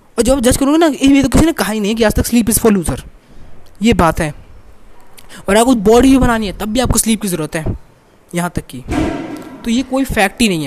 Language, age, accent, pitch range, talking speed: Hindi, 20-39, native, 190-240 Hz, 250 wpm